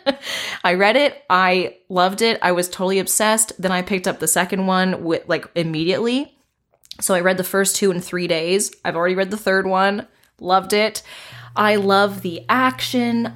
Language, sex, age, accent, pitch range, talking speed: English, female, 20-39, American, 165-220 Hz, 185 wpm